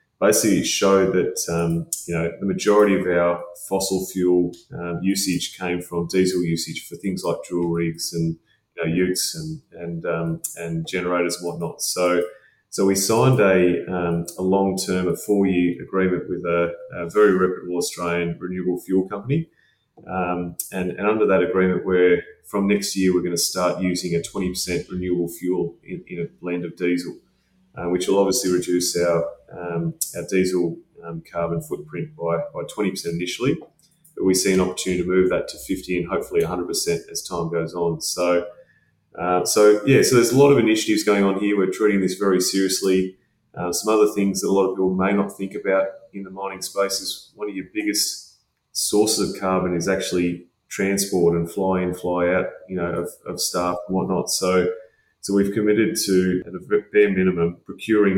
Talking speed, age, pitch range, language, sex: 190 wpm, 30-49, 85-95 Hz, English, male